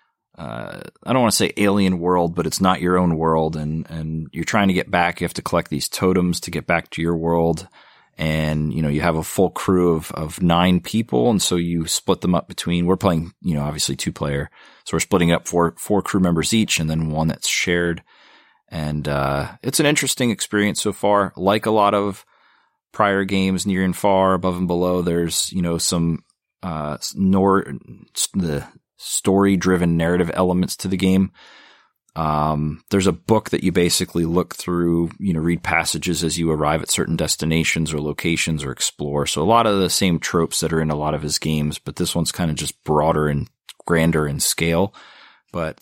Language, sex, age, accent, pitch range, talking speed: English, male, 30-49, American, 80-95 Hz, 205 wpm